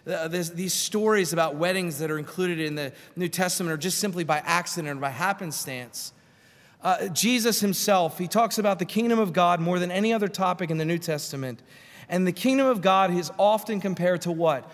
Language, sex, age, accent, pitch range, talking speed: English, male, 30-49, American, 170-230 Hz, 200 wpm